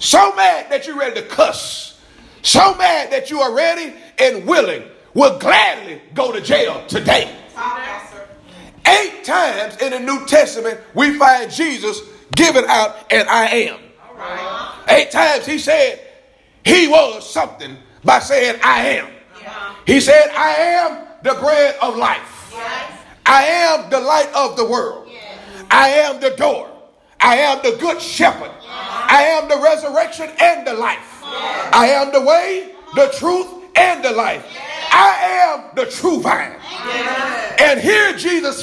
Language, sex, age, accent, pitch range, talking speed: English, male, 40-59, American, 260-330 Hz, 145 wpm